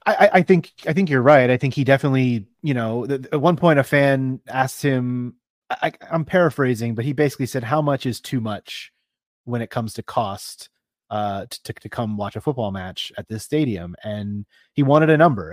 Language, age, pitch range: English, 30-49, 115-150 Hz